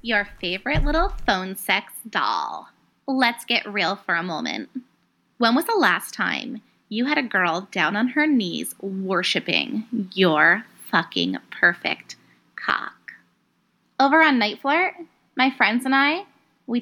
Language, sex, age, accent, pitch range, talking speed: English, female, 20-39, American, 215-275 Hz, 140 wpm